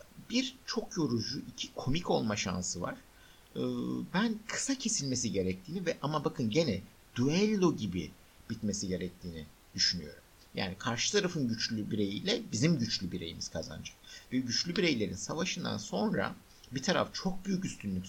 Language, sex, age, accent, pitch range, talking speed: Turkish, male, 60-79, native, 95-150 Hz, 135 wpm